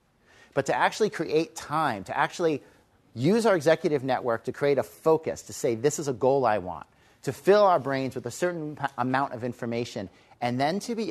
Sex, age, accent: male, 40-59, American